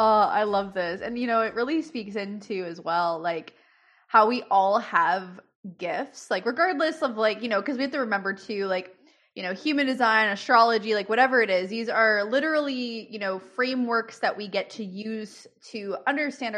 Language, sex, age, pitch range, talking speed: English, female, 20-39, 185-230 Hz, 195 wpm